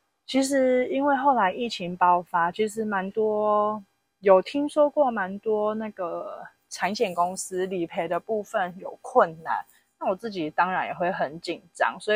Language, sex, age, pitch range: Chinese, female, 20-39, 180-220 Hz